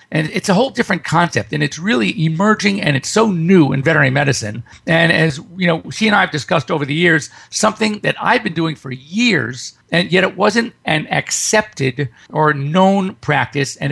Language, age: English, 50-69